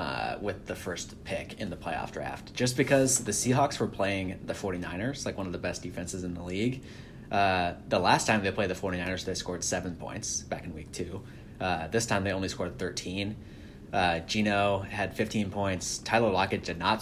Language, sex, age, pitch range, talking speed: English, male, 30-49, 90-105 Hz, 205 wpm